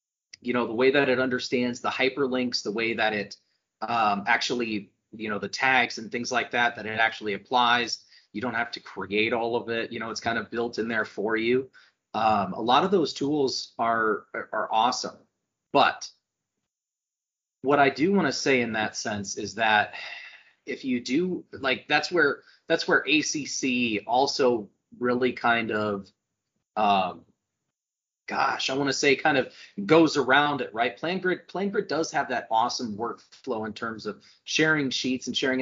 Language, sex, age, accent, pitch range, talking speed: English, male, 30-49, American, 115-130 Hz, 180 wpm